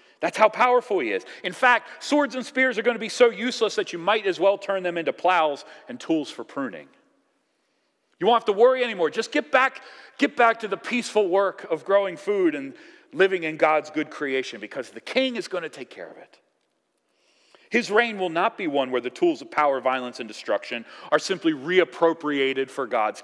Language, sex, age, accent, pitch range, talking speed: English, male, 40-59, American, 170-255 Hz, 210 wpm